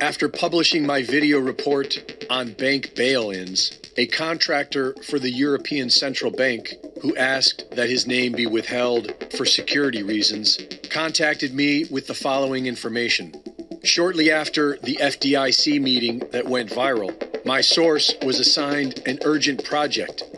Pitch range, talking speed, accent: 130-155 Hz, 135 wpm, American